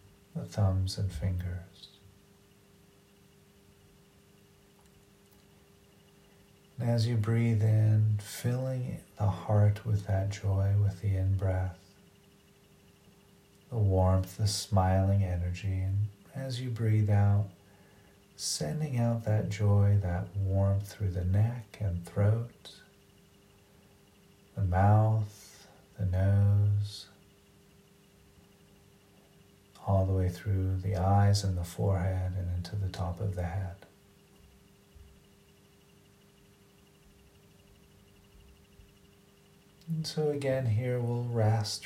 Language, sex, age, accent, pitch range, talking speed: English, male, 40-59, American, 95-110 Hz, 95 wpm